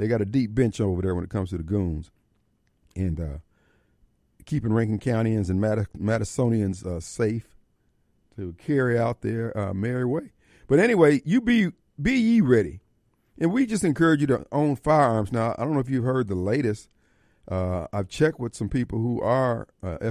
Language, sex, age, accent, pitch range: Japanese, male, 50-69, American, 95-125 Hz